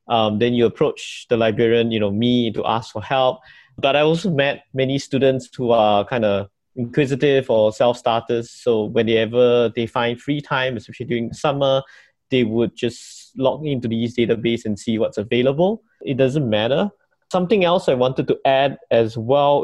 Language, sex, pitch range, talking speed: English, male, 120-145 Hz, 175 wpm